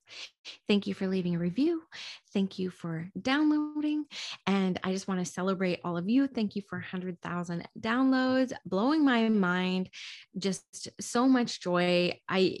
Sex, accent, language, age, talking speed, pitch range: female, American, English, 20-39, 155 wpm, 175-220 Hz